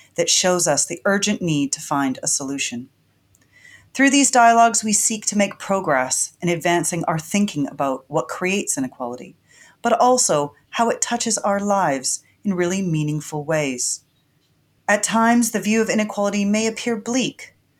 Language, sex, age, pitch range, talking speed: English, female, 40-59, 150-215 Hz, 155 wpm